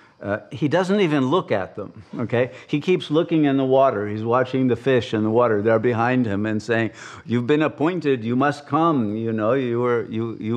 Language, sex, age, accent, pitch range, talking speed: English, male, 50-69, American, 115-140 Hz, 215 wpm